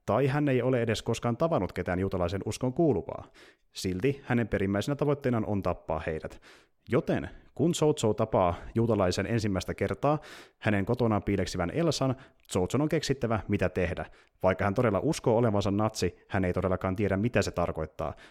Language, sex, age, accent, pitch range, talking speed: Finnish, male, 30-49, native, 95-130 Hz, 155 wpm